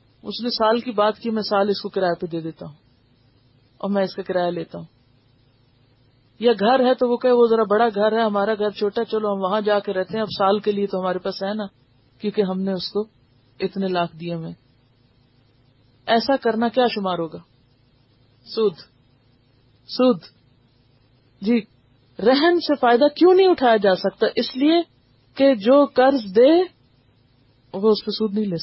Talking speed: 190 wpm